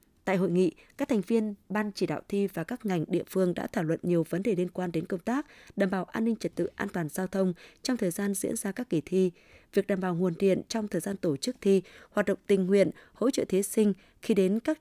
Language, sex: Vietnamese, female